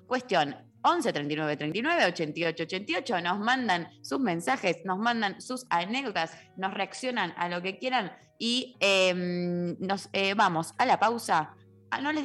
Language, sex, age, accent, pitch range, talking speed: Spanish, female, 20-39, Argentinian, 165-210 Hz, 130 wpm